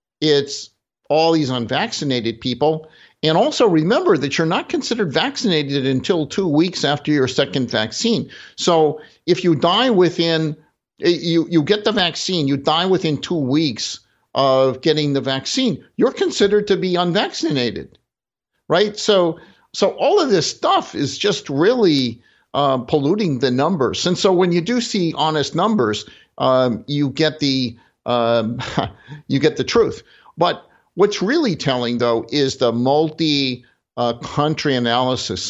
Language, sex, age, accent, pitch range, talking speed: English, male, 50-69, American, 125-165 Hz, 145 wpm